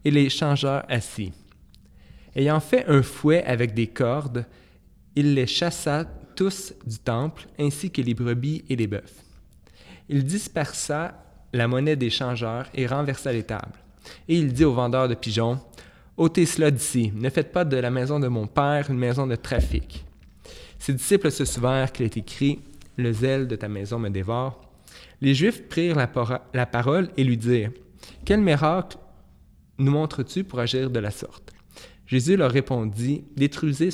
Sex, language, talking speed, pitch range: male, French, 175 wpm, 115-145 Hz